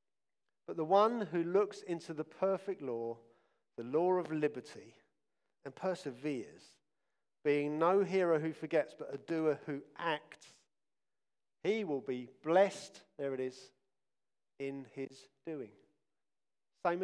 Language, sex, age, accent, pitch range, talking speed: English, male, 50-69, British, 140-195 Hz, 125 wpm